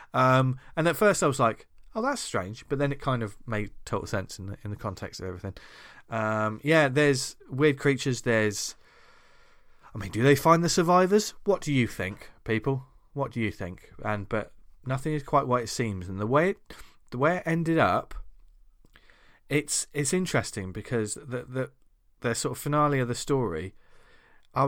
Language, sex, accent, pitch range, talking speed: English, male, British, 110-145 Hz, 185 wpm